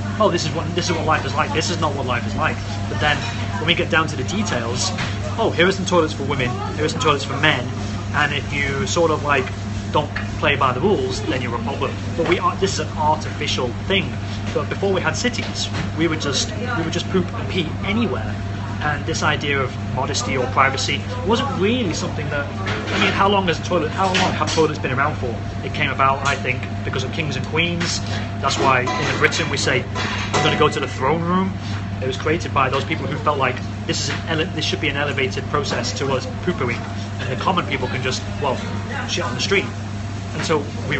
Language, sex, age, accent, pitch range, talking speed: English, male, 30-49, British, 100-115 Hz, 235 wpm